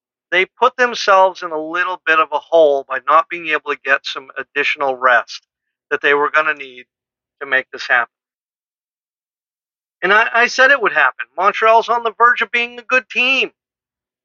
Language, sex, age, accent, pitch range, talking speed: English, male, 50-69, American, 145-205 Hz, 190 wpm